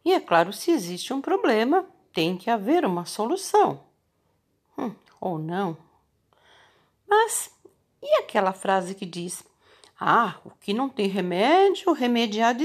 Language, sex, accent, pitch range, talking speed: Portuguese, female, Brazilian, 190-270 Hz, 140 wpm